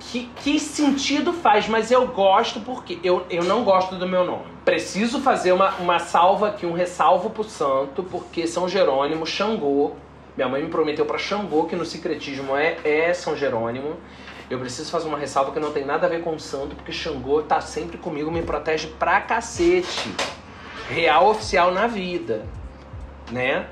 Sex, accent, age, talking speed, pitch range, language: male, Brazilian, 30-49, 175 wpm, 160-225 Hz, Portuguese